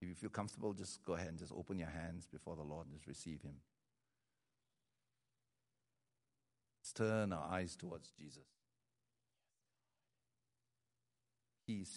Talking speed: 130 wpm